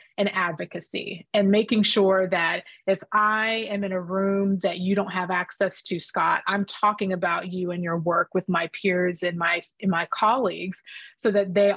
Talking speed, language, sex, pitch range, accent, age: 185 wpm, English, female, 185-225 Hz, American, 30-49